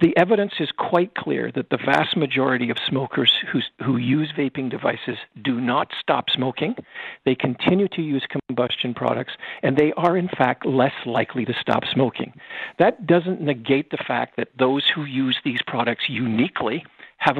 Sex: male